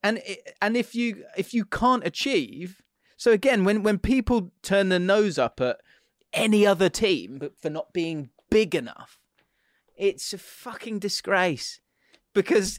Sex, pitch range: male, 145-205 Hz